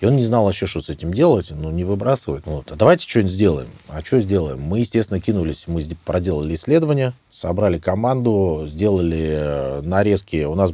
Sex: male